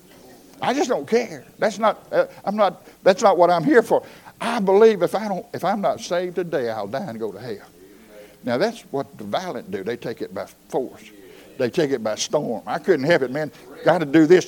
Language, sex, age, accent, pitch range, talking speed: English, male, 60-79, American, 155-245 Hz, 230 wpm